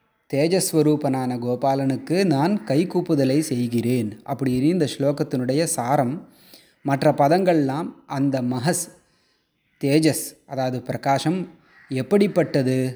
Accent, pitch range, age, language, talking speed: native, 130-170 Hz, 20-39, Tamil, 80 wpm